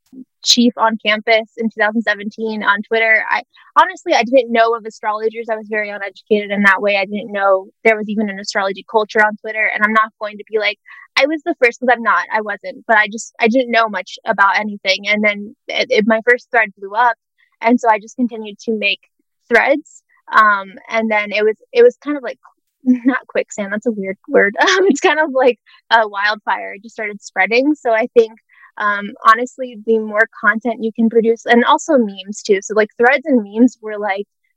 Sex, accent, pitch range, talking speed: female, American, 210-255 Hz, 215 wpm